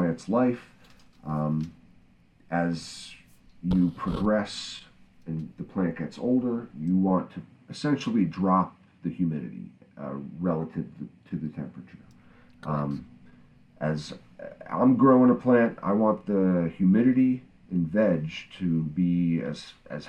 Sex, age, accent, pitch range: male, 40-59, American, 80-110 Hz